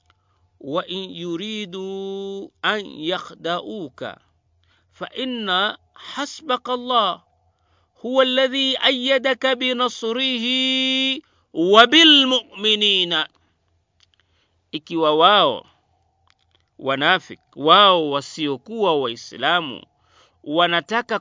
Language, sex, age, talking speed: Swahili, male, 50-69, 60 wpm